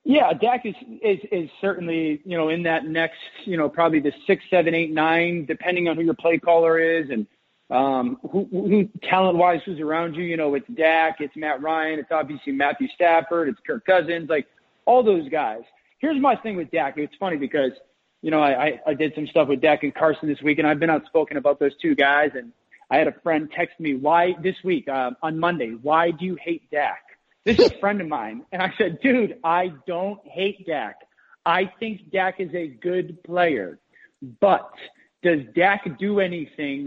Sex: male